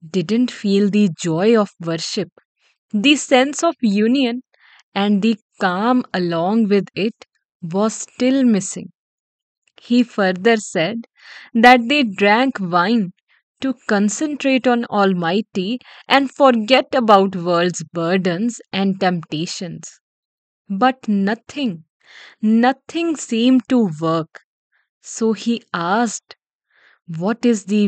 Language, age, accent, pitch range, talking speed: English, 20-39, Indian, 185-240 Hz, 105 wpm